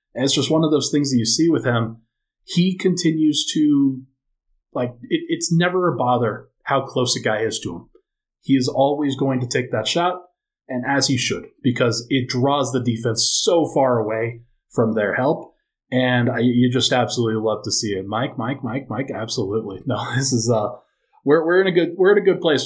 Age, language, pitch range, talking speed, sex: 30-49, English, 120-150 Hz, 210 wpm, male